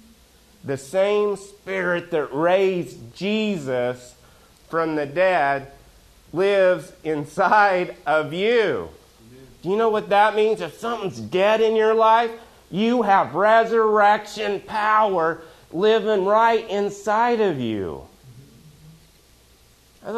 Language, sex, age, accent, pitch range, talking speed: English, male, 30-49, American, 140-205 Hz, 105 wpm